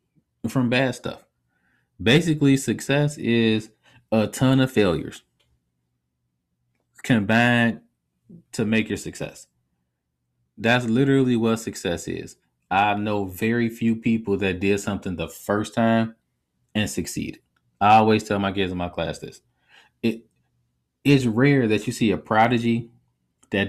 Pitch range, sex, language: 85-130 Hz, male, English